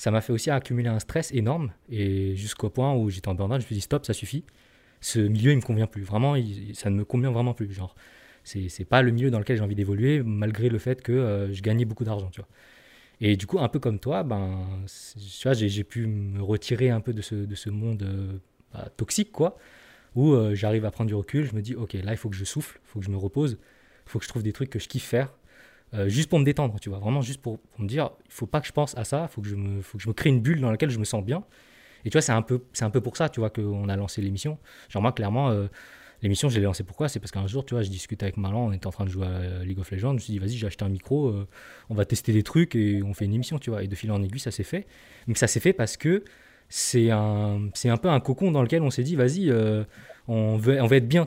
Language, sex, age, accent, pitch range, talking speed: French, male, 20-39, French, 100-130 Hz, 305 wpm